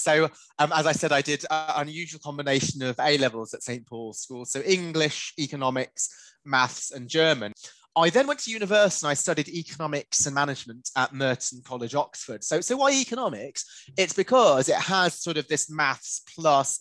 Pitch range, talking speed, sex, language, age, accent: 125-160 Hz, 180 wpm, male, English, 20-39, British